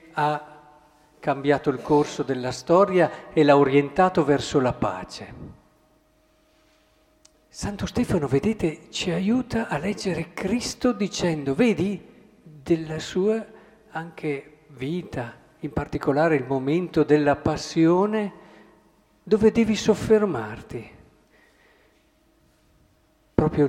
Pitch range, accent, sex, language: 145-200 Hz, native, male, Italian